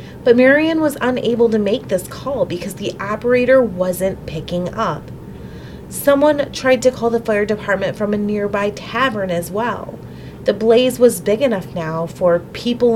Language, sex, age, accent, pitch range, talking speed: English, female, 30-49, American, 170-230 Hz, 160 wpm